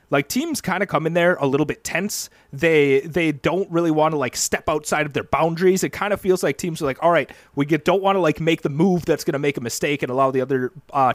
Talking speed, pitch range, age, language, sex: 285 wpm, 145-210 Hz, 30-49, English, male